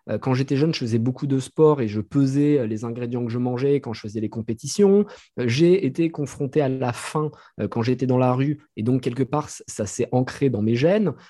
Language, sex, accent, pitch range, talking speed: French, male, French, 115-145 Hz, 225 wpm